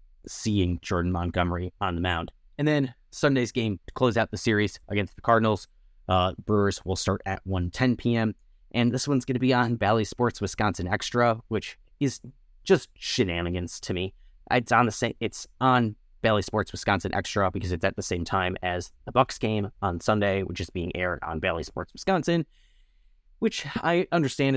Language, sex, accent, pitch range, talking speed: English, male, American, 95-115 Hz, 185 wpm